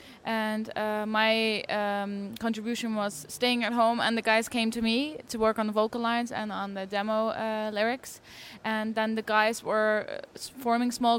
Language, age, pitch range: English, 10-29, 210-235 Hz